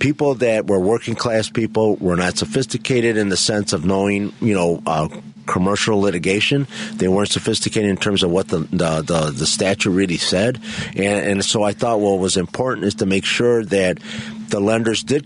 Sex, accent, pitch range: male, American, 95-110 Hz